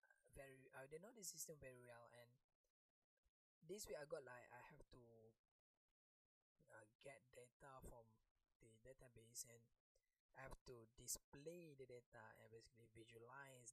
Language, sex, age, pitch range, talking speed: English, male, 20-39, 120-155 Hz, 140 wpm